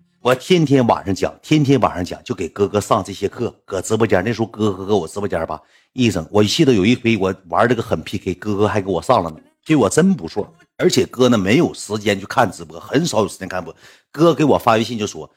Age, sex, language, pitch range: 50-69, male, Chinese, 90-125 Hz